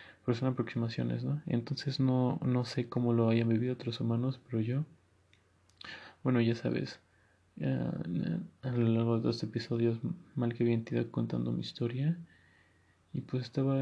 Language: Spanish